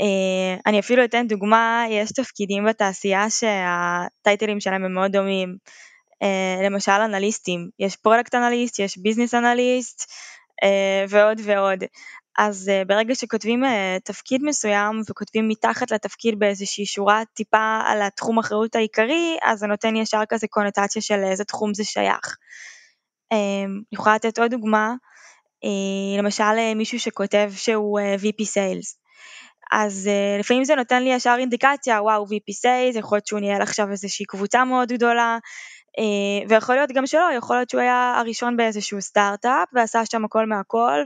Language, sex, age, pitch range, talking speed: Hebrew, female, 10-29, 205-240 Hz, 150 wpm